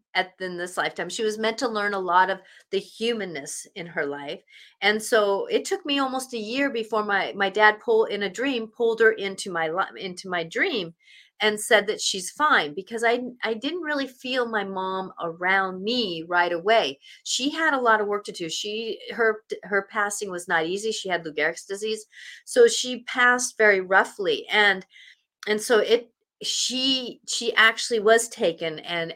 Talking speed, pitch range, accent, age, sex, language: 190 wpm, 185-245 Hz, American, 40-59, female, English